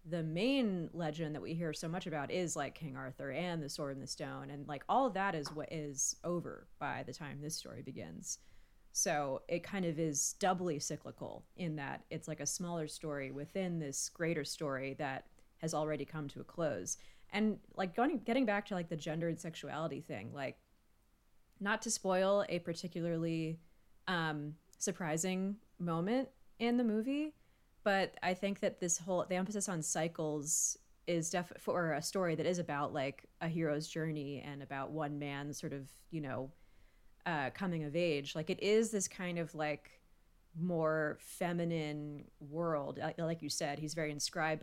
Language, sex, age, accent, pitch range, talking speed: English, female, 30-49, American, 150-180 Hz, 180 wpm